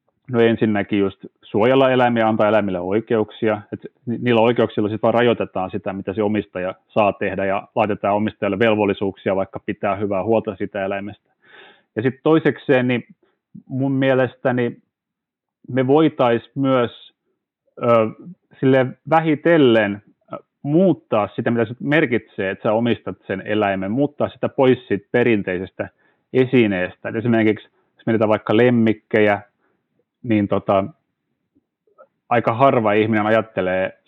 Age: 30-49